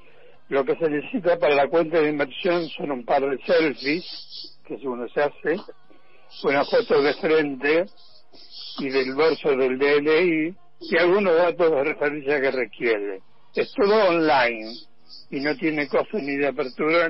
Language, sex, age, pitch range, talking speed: Spanish, male, 60-79, 135-170 Hz, 160 wpm